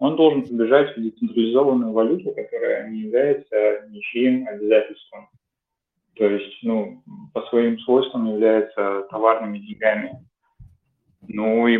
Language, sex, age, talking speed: Russian, male, 20-39, 110 wpm